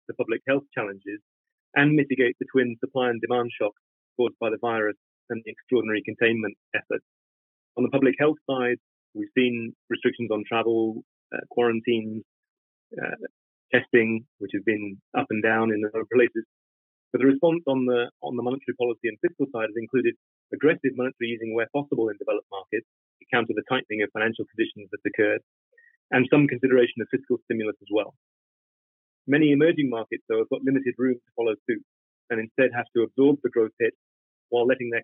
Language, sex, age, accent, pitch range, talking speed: English, male, 30-49, British, 115-140 Hz, 180 wpm